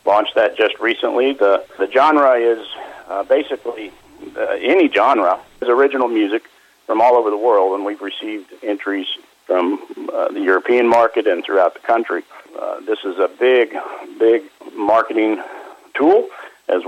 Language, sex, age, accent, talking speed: English, male, 50-69, American, 155 wpm